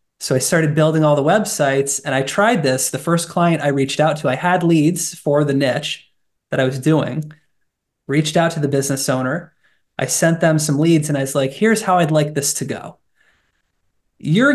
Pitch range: 150-185 Hz